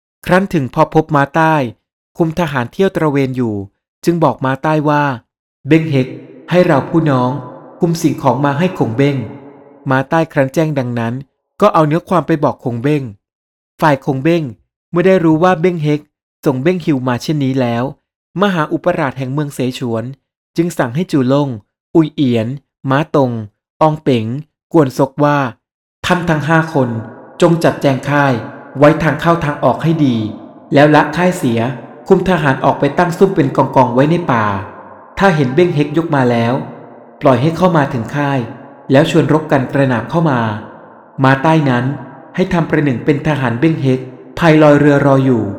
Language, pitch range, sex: Thai, 130-160 Hz, male